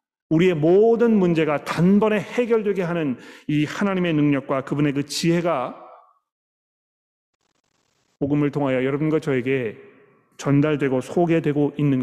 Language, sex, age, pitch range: Korean, male, 40-59, 140-180 Hz